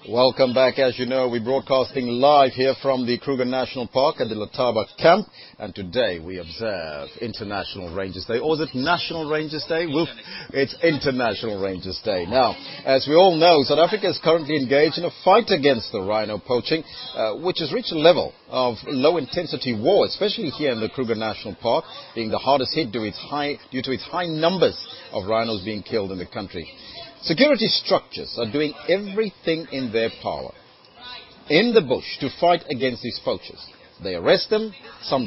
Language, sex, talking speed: English, male, 180 wpm